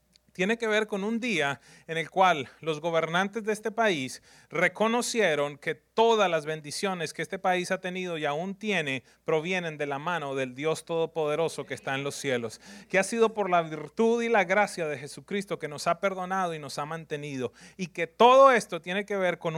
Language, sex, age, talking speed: English, male, 30-49, 200 wpm